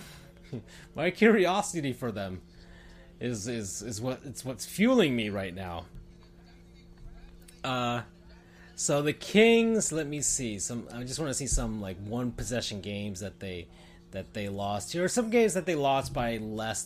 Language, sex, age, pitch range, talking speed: English, male, 30-49, 95-150 Hz, 165 wpm